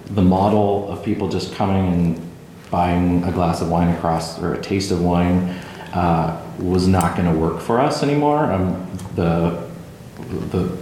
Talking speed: 165 wpm